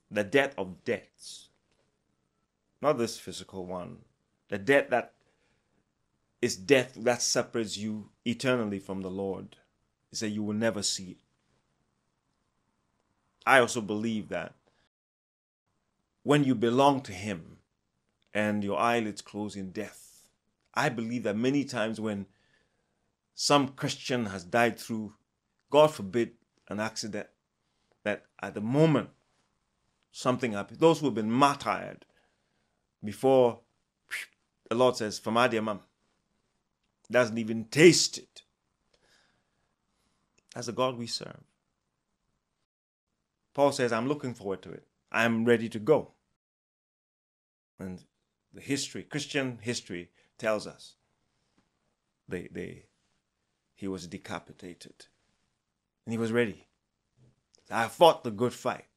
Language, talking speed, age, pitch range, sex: English, 120 wpm, 30-49, 100-125 Hz, male